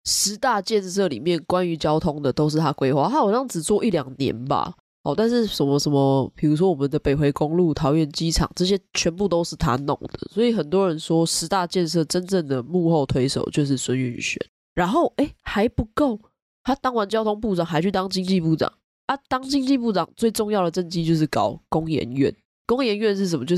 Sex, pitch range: female, 145-195 Hz